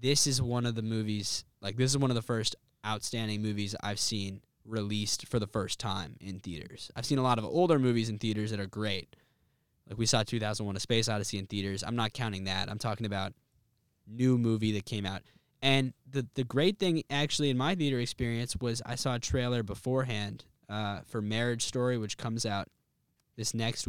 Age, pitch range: 10-29, 105-125 Hz